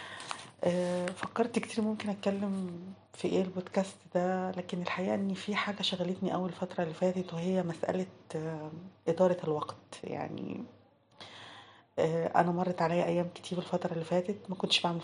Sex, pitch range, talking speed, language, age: female, 165-190 Hz, 135 wpm, Arabic, 30-49